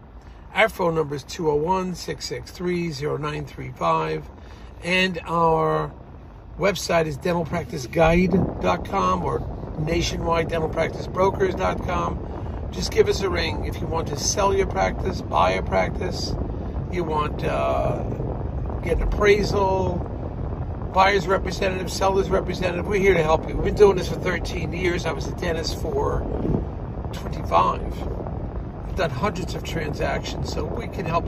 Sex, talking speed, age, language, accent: male, 125 wpm, 50-69, English, American